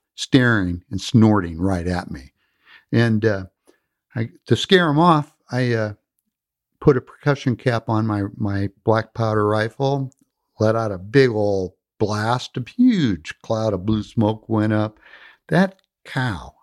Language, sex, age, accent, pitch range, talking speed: English, male, 60-79, American, 105-145 Hz, 150 wpm